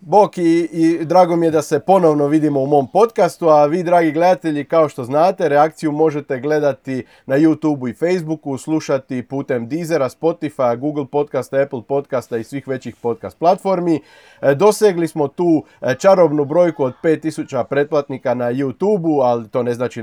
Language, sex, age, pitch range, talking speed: Croatian, male, 30-49, 130-170 Hz, 165 wpm